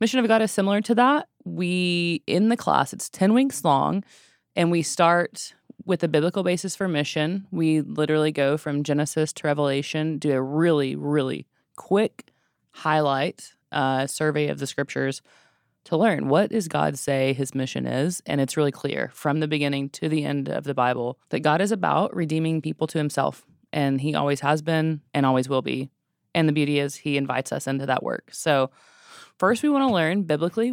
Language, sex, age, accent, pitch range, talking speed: English, female, 20-39, American, 140-175 Hz, 190 wpm